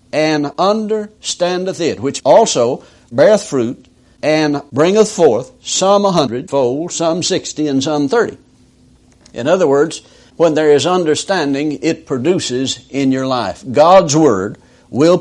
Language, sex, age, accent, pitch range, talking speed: English, male, 60-79, American, 140-195 Hz, 130 wpm